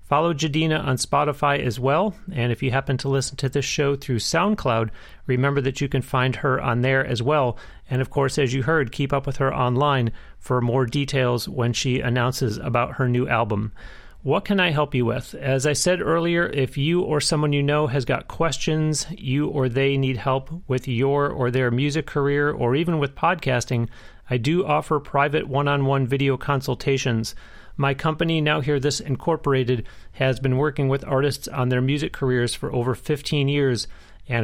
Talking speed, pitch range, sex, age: 190 wpm, 125-145 Hz, male, 30-49